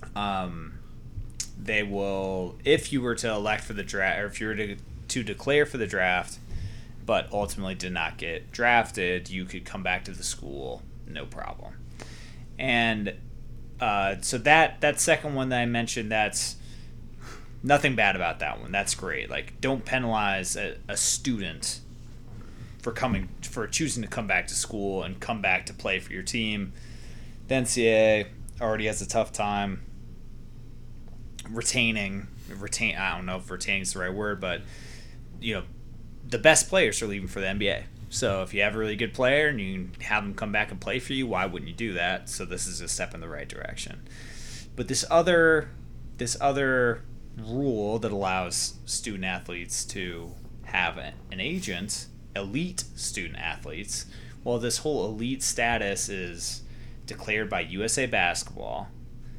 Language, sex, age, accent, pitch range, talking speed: English, male, 20-39, American, 95-120 Hz, 165 wpm